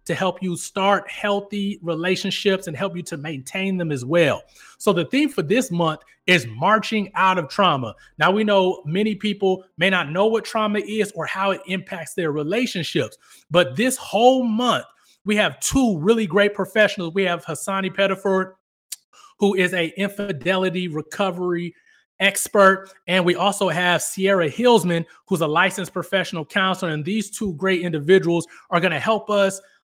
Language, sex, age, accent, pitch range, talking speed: English, male, 30-49, American, 170-205 Hz, 165 wpm